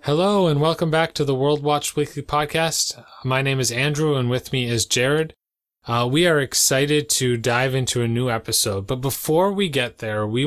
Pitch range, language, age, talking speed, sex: 110-145 Hz, English, 20-39, 200 wpm, male